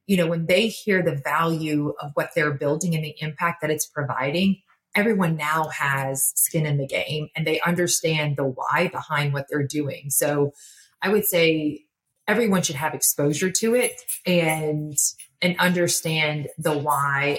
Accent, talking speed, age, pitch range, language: American, 165 wpm, 30-49, 145-170 Hz, English